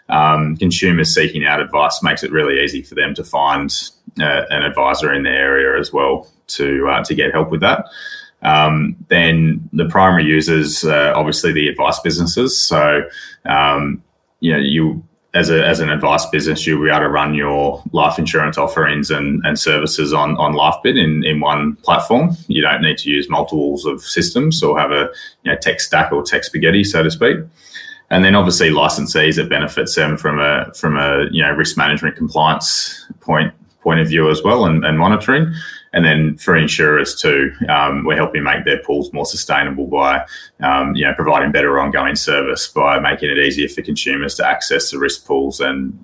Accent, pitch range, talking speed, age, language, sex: Australian, 70-80 Hz, 195 wpm, 20-39, English, male